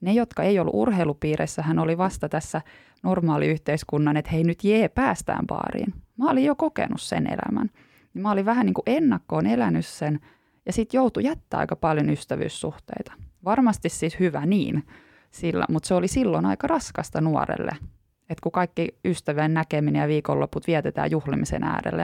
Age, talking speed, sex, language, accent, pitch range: 20-39, 160 wpm, female, Finnish, native, 140-185 Hz